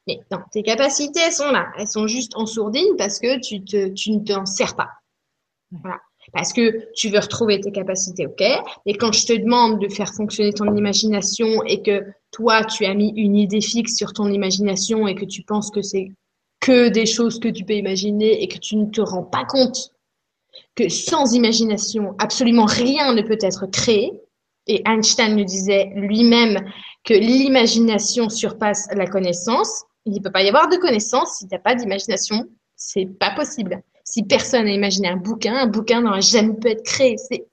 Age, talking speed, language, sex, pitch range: 20-39, 195 wpm, French, female, 205-250 Hz